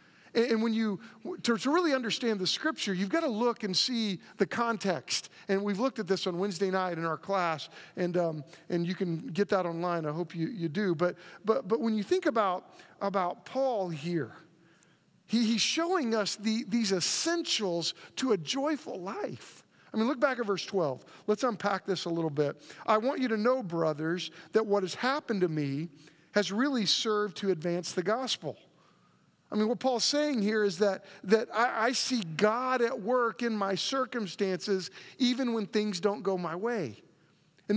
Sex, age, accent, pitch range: male, 50-69, American, 180-240 Hz